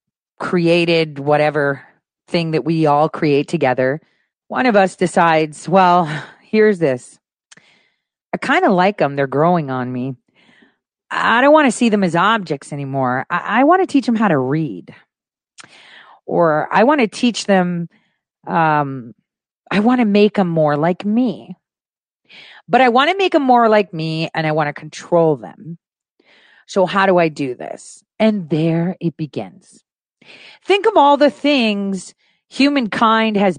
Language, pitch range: English, 160-230 Hz